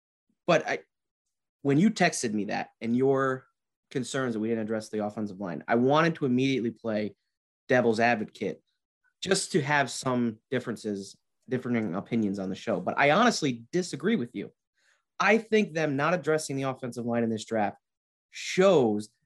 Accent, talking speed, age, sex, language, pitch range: American, 160 wpm, 30-49, male, English, 110-145 Hz